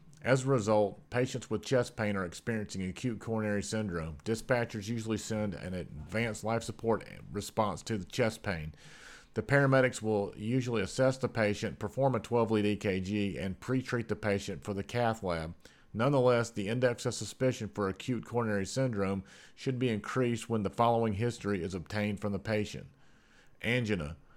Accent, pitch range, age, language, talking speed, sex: American, 100-120 Hz, 40-59, English, 160 wpm, male